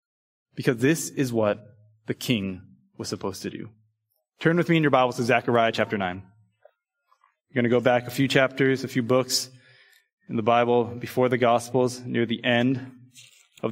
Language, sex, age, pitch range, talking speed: English, male, 20-39, 125-180 Hz, 180 wpm